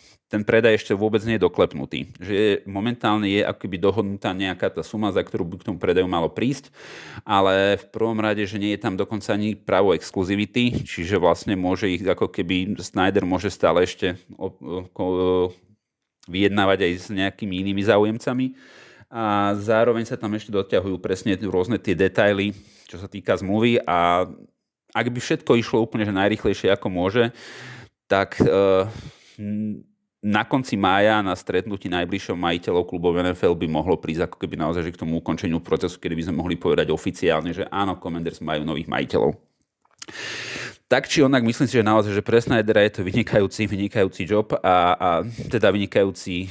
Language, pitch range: Slovak, 95-115 Hz